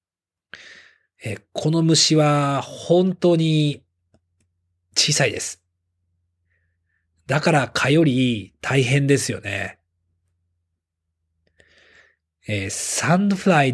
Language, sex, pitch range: Japanese, male, 90-145 Hz